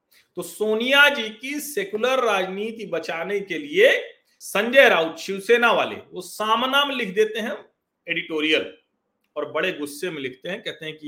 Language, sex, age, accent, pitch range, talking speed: Hindi, male, 40-59, native, 170-285 Hz, 150 wpm